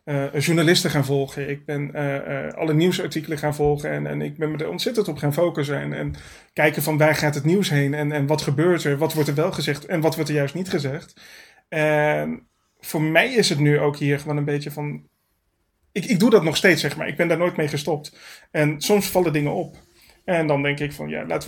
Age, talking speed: 30-49, 240 wpm